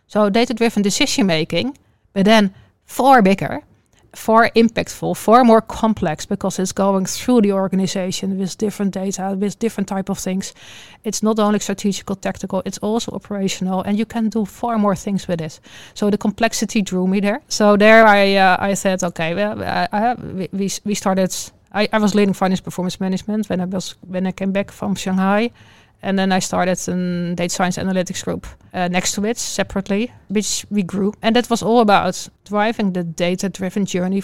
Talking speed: 185 wpm